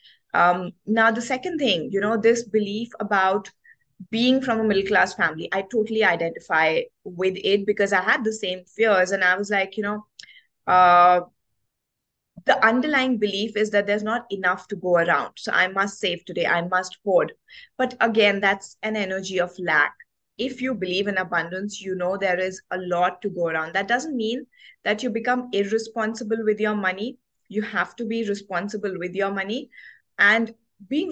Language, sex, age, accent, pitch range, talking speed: English, female, 20-39, Indian, 190-230 Hz, 180 wpm